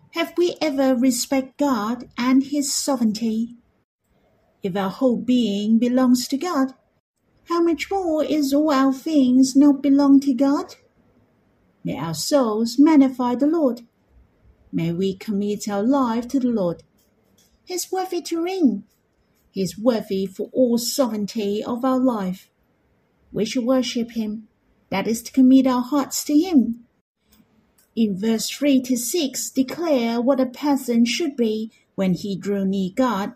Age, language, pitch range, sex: 50-69, Chinese, 225-280 Hz, female